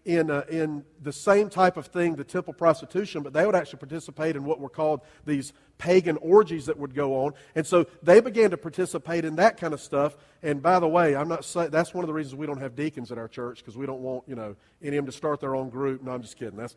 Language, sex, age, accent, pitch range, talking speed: English, male, 40-59, American, 140-180 Hz, 270 wpm